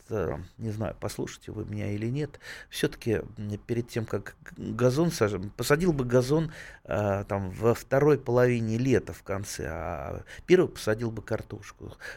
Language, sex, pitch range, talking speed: Russian, male, 95-120 Hz, 135 wpm